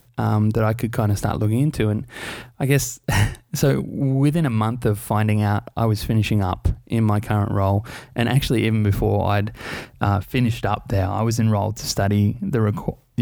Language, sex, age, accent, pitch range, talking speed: English, male, 20-39, Australian, 105-125 Hz, 190 wpm